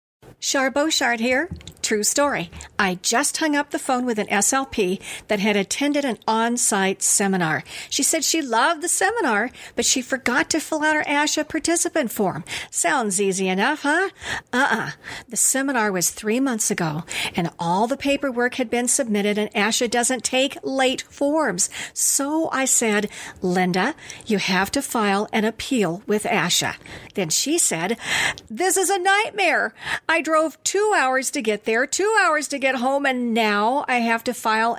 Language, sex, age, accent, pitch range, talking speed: English, female, 50-69, American, 210-295 Hz, 170 wpm